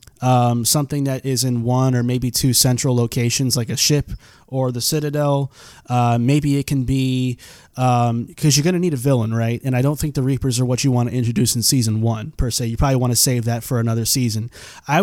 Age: 20-39